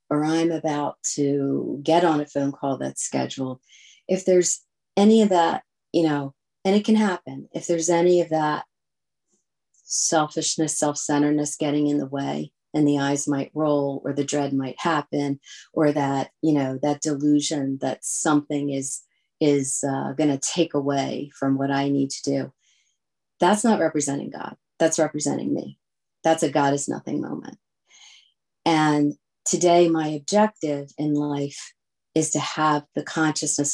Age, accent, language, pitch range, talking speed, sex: 40-59, American, English, 145-170 Hz, 155 wpm, female